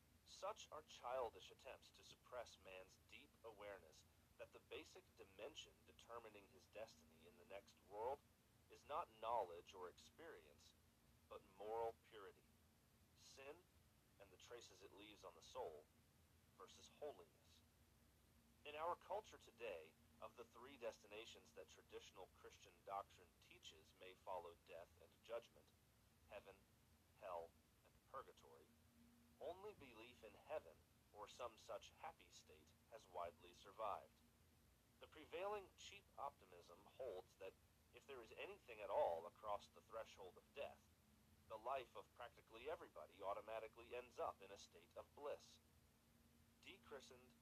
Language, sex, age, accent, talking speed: English, male, 40-59, American, 130 wpm